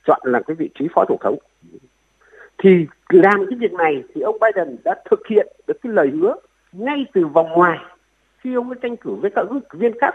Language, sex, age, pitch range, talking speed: Vietnamese, male, 60-79, 195-320 Hz, 220 wpm